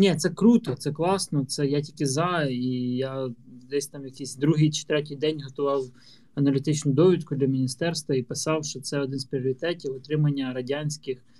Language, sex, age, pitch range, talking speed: Ukrainian, male, 20-39, 130-150 Hz, 170 wpm